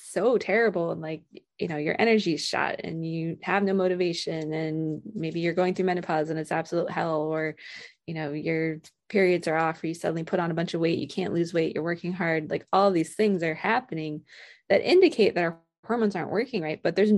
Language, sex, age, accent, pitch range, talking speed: English, female, 20-39, American, 160-190 Hz, 225 wpm